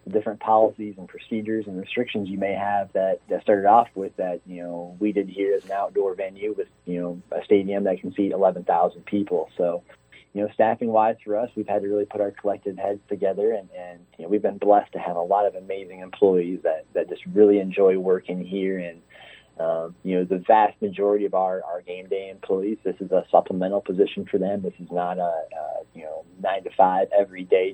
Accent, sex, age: American, male, 30-49